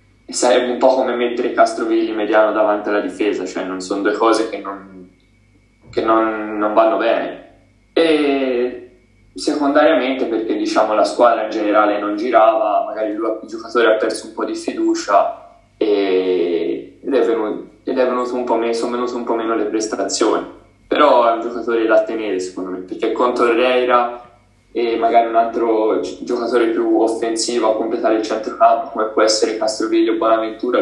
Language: Italian